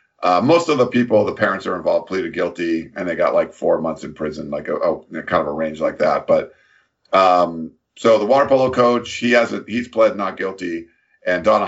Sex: male